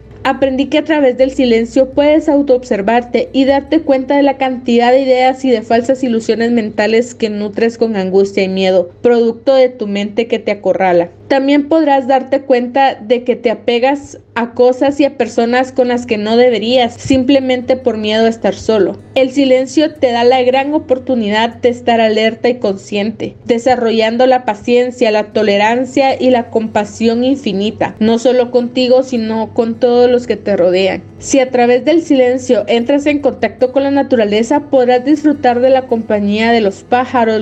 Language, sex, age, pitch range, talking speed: Spanish, female, 30-49, 225-265 Hz, 175 wpm